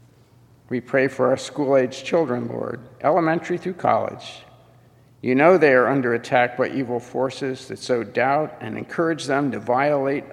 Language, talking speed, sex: English, 155 wpm, male